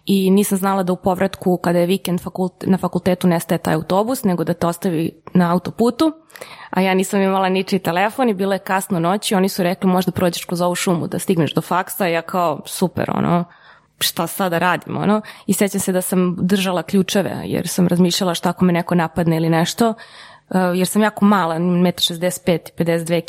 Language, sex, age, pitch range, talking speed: Croatian, female, 20-39, 180-220 Hz, 195 wpm